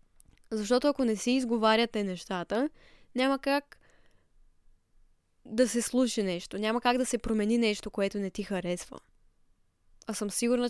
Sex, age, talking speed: female, 10-29, 140 wpm